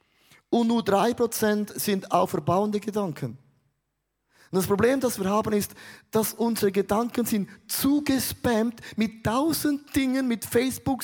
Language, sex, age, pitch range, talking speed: German, male, 30-49, 155-210 Hz, 130 wpm